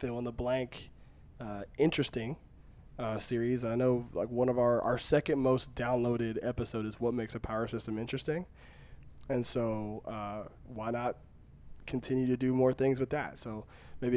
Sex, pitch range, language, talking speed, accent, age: male, 110-130 Hz, English, 155 wpm, American, 20-39